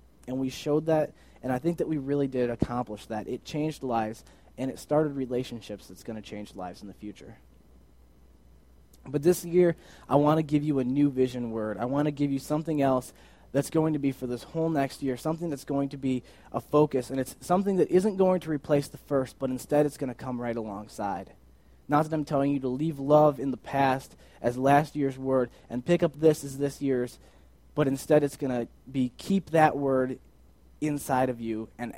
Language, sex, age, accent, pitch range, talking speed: English, male, 20-39, American, 90-145 Hz, 220 wpm